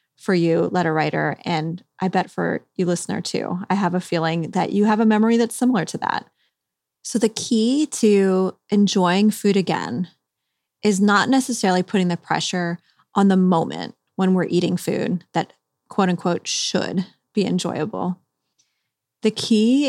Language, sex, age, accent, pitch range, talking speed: English, female, 20-39, American, 175-210 Hz, 155 wpm